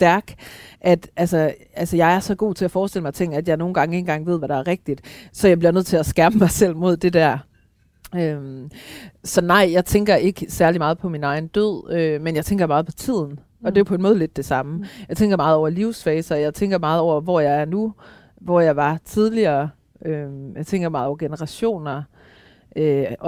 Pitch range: 150-190 Hz